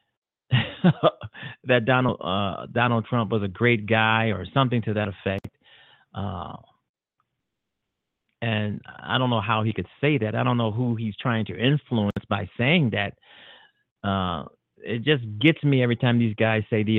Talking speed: 165 wpm